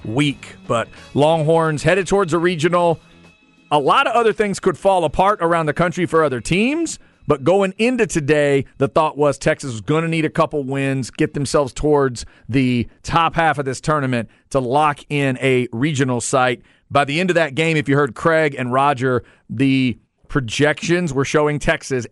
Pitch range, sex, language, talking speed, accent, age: 125-160 Hz, male, English, 185 wpm, American, 40-59